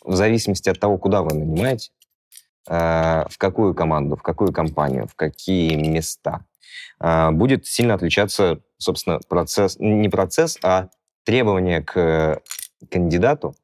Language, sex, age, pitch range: Russian, male, 20-39, 80-100 Hz